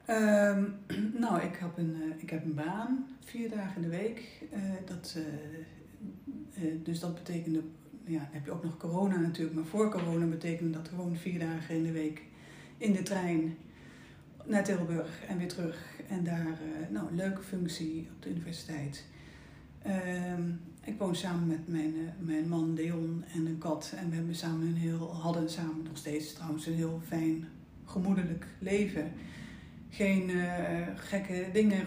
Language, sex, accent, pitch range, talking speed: Dutch, female, Dutch, 160-185 Hz, 170 wpm